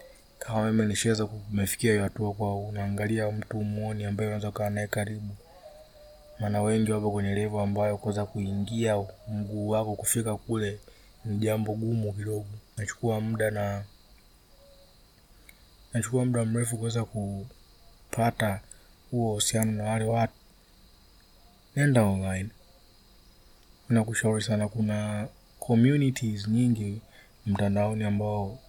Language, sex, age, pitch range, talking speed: Swahili, male, 20-39, 105-115 Hz, 105 wpm